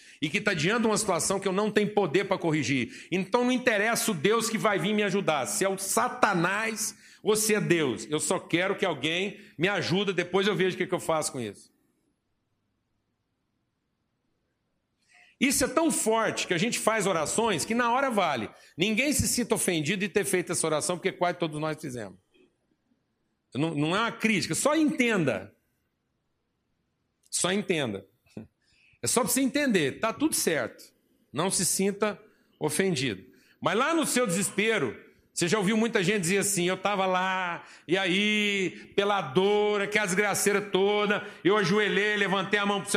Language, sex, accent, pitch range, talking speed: Portuguese, male, Brazilian, 180-225 Hz, 175 wpm